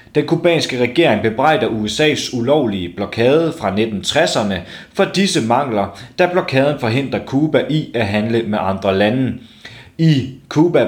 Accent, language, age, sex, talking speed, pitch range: native, Danish, 30-49, male, 130 wpm, 115-160 Hz